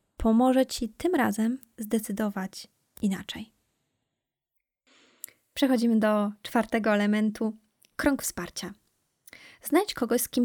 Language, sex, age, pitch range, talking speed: Polish, female, 20-39, 210-250 Hz, 90 wpm